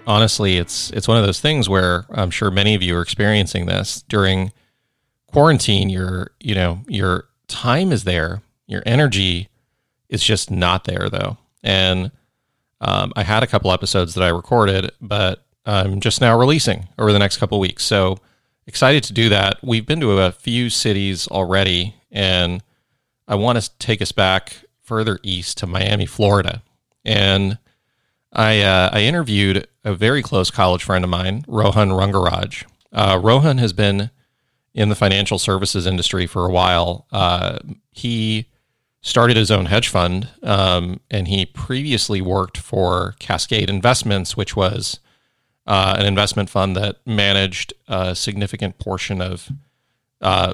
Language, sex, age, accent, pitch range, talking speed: English, male, 30-49, American, 95-115 Hz, 155 wpm